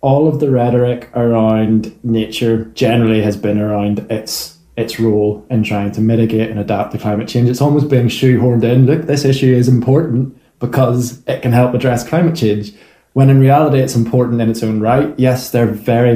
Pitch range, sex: 115-130 Hz, male